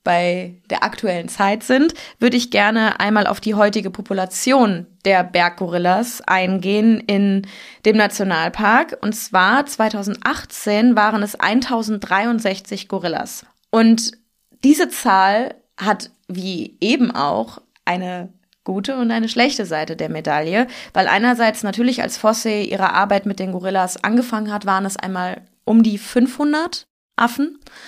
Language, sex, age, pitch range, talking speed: German, female, 20-39, 200-245 Hz, 130 wpm